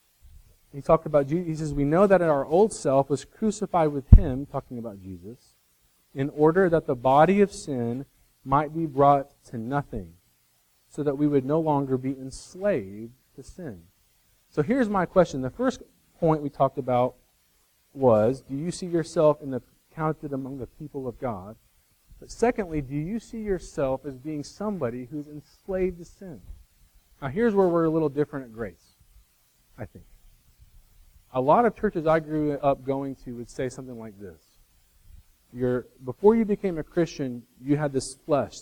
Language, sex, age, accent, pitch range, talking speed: English, male, 40-59, American, 115-165 Hz, 175 wpm